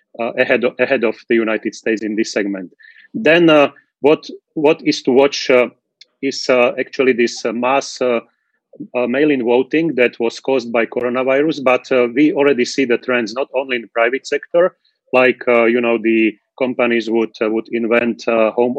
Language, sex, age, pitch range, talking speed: Slovak, male, 30-49, 115-135 Hz, 190 wpm